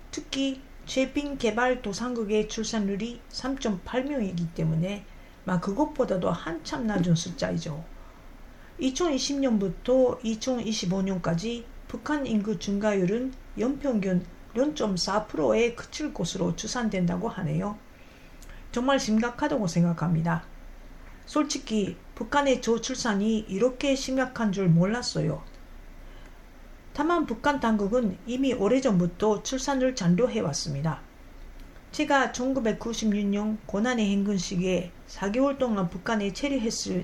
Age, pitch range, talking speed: 50-69, 185-255 Hz, 85 wpm